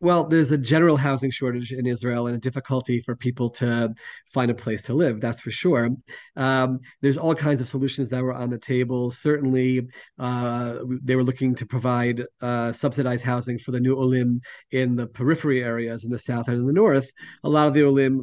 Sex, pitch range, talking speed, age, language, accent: male, 120-140 Hz, 205 wpm, 40-59, English, American